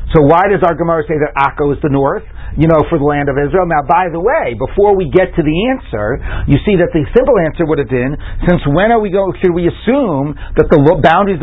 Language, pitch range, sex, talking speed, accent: English, 145-185 Hz, male, 255 wpm, American